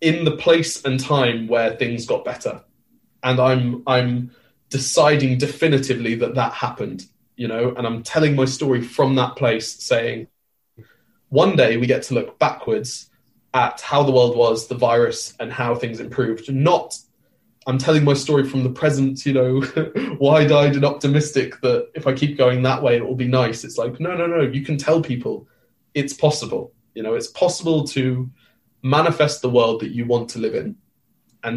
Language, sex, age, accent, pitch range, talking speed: English, male, 20-39, British, 120-145 Hz, 185 wpm